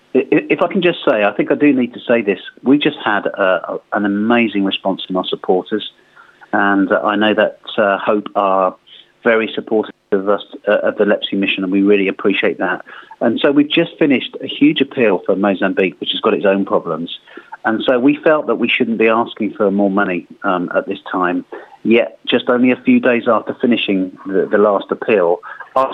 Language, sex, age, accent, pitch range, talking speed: English, male, 40-59, British, 95-115 Hz, 205 wpm